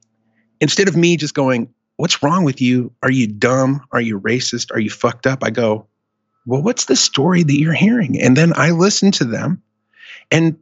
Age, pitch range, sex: 30-49, 120-155 Hz, male